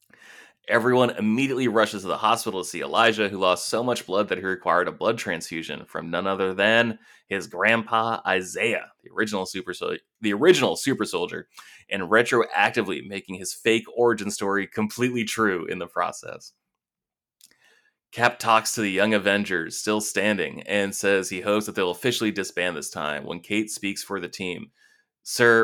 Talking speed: 170 wpm